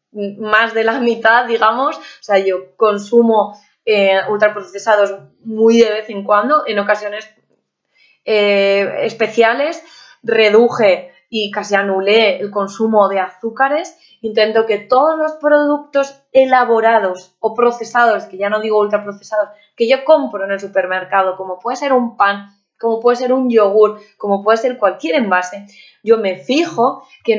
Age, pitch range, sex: 20-39, 200-240 Hz, female